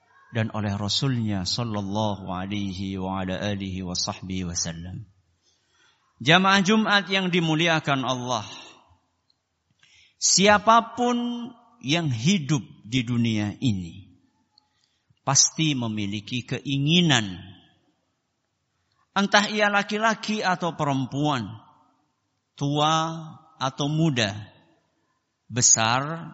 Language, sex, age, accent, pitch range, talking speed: Indonesian, male, 50-69, native, 105-175 Hz, 60 wpm